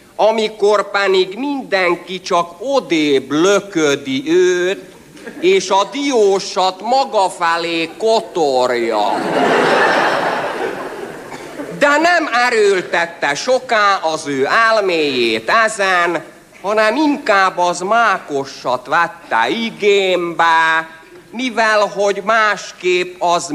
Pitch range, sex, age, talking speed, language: 155-225 Hz, male, 50-69, 80 wpm, Hungarian